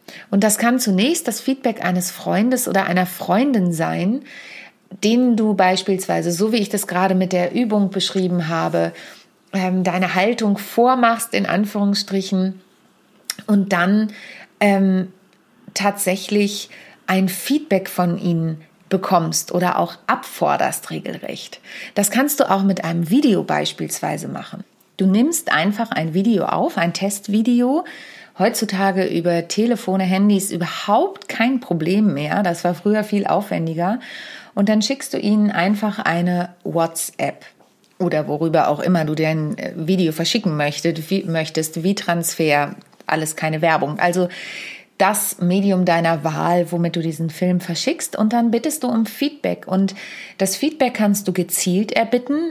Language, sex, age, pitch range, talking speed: German, female, 30-49, 175-215 Hz, 135 wpm